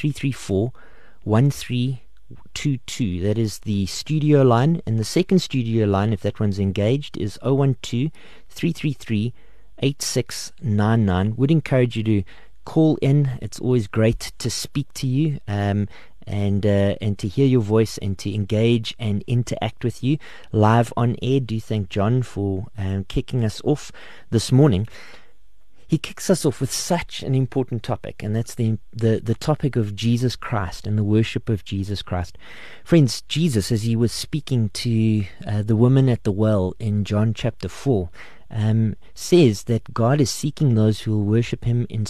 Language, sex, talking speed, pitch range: English, male, 175 wpm, 105-135 Hz